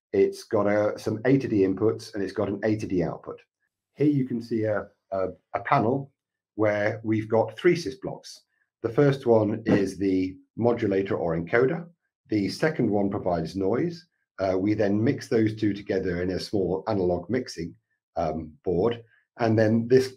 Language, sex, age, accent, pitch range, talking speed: English, male, 40-59, British, 95-120 Hz, 175 wpm